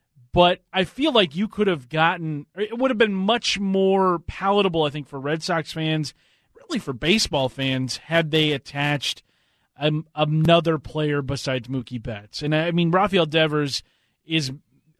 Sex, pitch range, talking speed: male, 135-165 Hz, 155 wpm